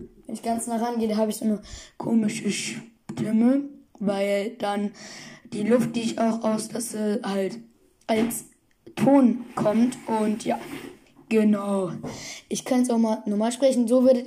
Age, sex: 20-39, female